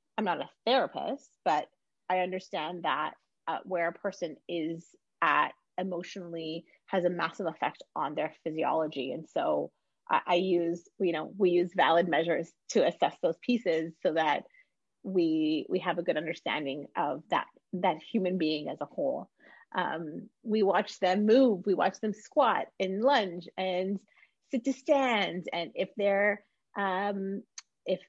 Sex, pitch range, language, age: female, 175-215 Hz, English, 30-49